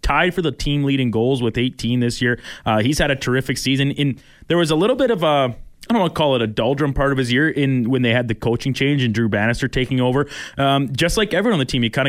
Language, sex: English, male